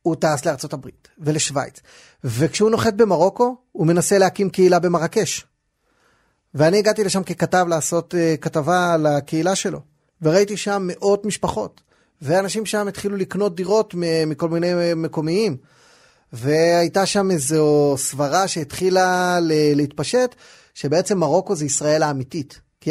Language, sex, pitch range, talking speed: Hebrew, male, 145-185 Hz, 120 wpm